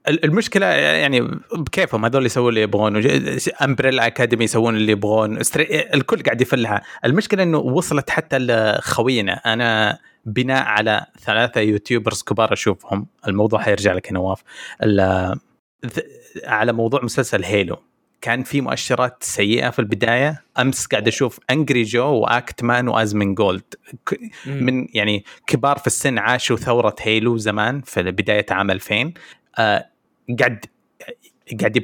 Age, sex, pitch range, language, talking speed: 20-39, male, 105-130 Hz, Arabic, 120 wpm